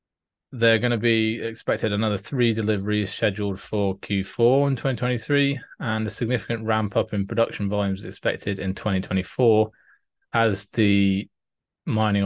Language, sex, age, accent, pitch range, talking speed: English, male, 20-39, British, 95-110 Hz, 130 wpm